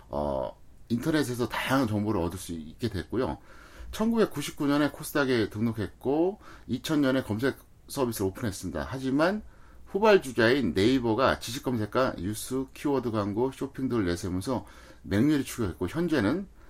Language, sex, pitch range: Korean, male, 105-145 Hz